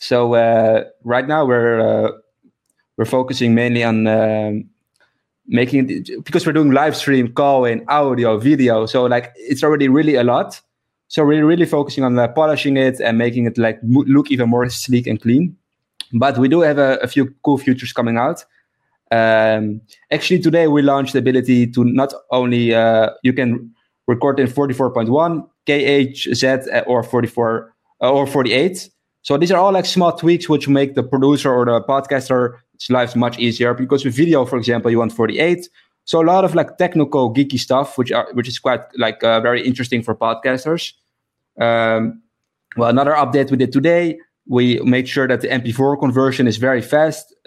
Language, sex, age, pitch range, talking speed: English, male, 20-39, 120-145 Hz, 180 wpm